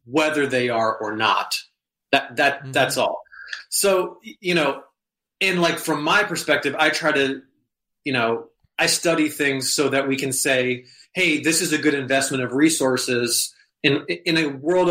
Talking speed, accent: 170 wpm, American